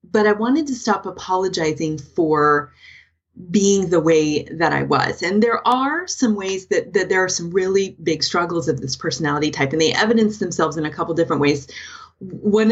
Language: English